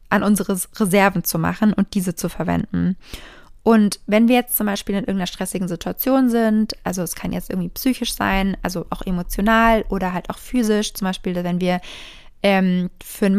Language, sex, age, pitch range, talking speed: German, female, 20-39, 195-225 Hz, 185 wpm